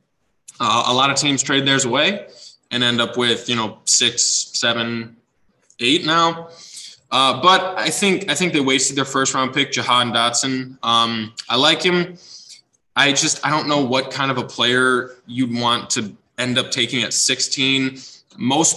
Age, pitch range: 20-39, 120-140 Hz